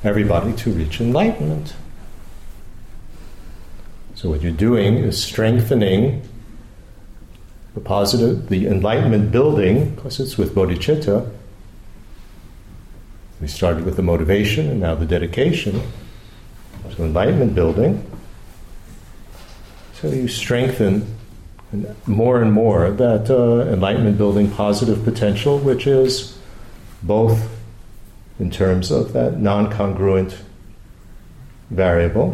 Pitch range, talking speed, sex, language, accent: 95-110 Hz, 95 wpm, male, English, American